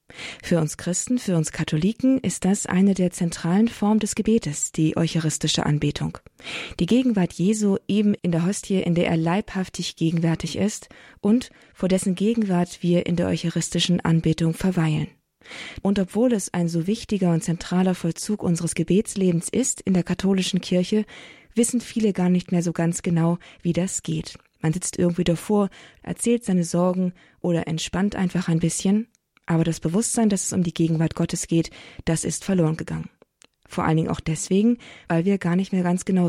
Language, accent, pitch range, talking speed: German, German, 165-195 Hz, 175 wpm